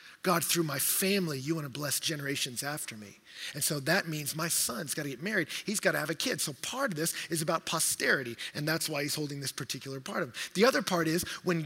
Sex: male